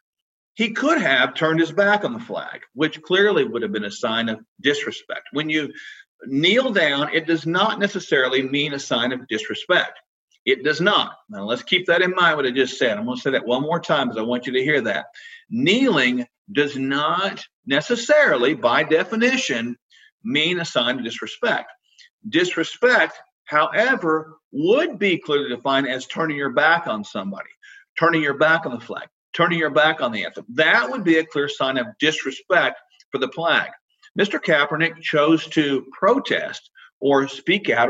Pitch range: 130-200 Hz